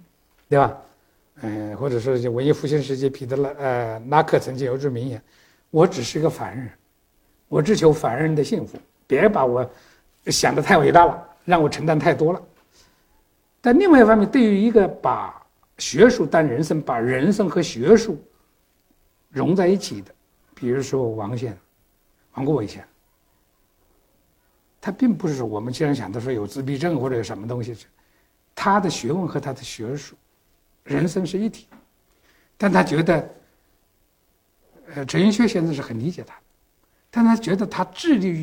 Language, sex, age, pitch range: Chinese, male, 60-79, 120-180 Hz